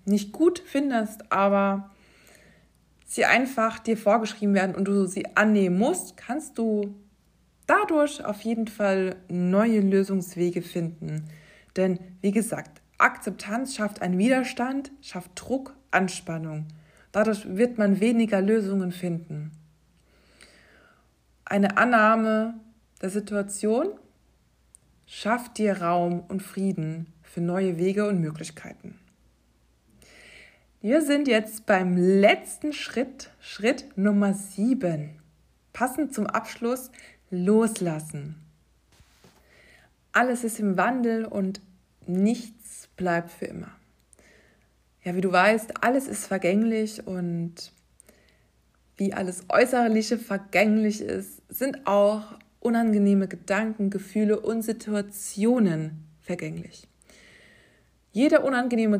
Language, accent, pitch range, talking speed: German, German, 180-225 Hz, 100 wpm